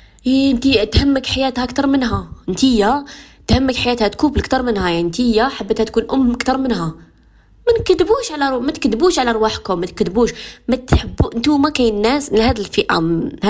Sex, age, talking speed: female, 20-39, 165 wpm